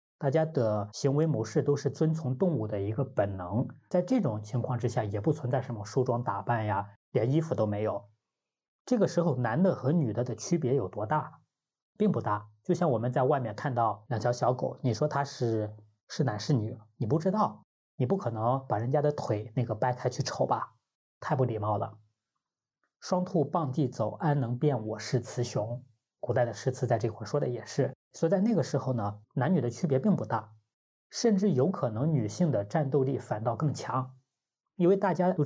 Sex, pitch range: male, 115-155 Hz